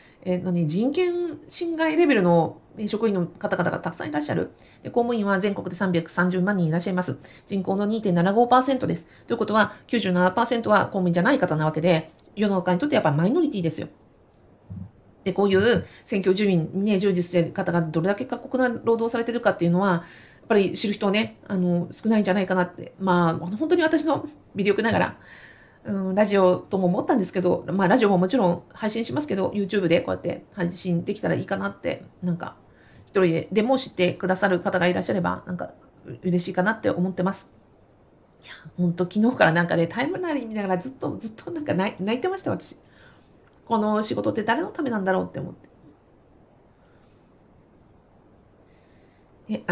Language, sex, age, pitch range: Japanese, female, 40-59, 175-220 Hz